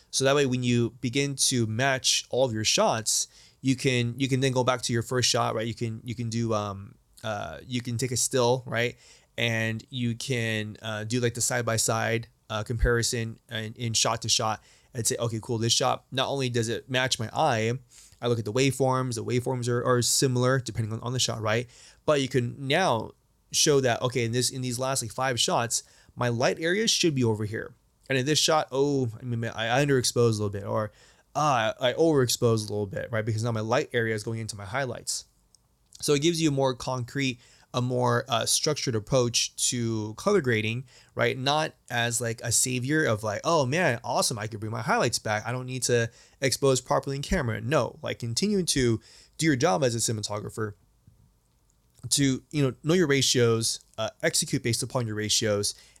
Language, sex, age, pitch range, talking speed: English, male, 20-39, 115-135 Hz, 210 wpm